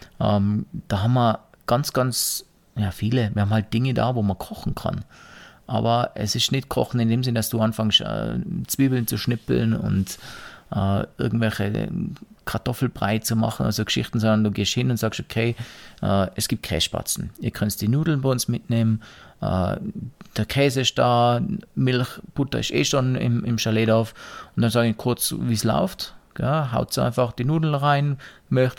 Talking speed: 185 wpm